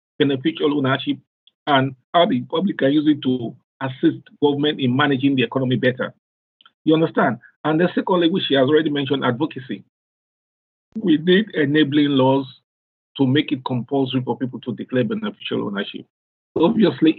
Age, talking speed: 50-69, 150 wpm